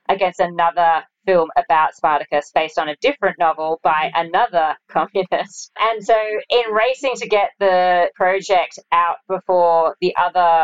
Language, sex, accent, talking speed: English, female, Australian, 140 wpm